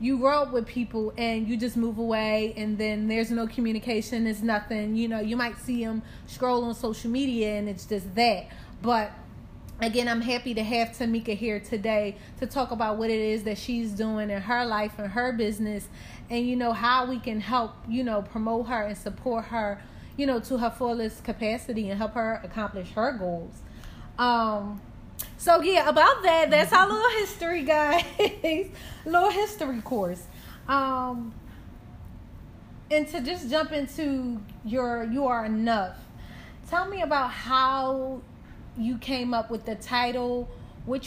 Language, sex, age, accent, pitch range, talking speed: English, female, 20-39, American, 215-250 Hz, 165 wpm